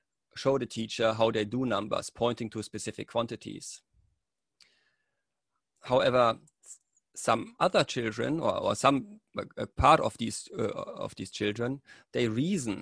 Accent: German